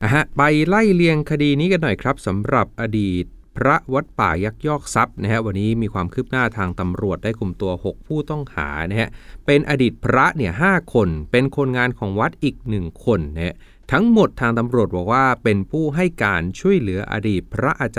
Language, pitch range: Thai, 95-135 Hz